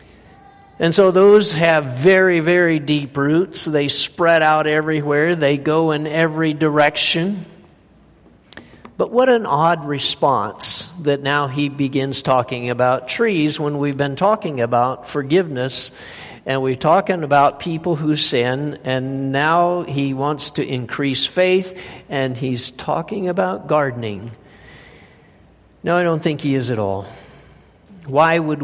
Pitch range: 125-170 Hz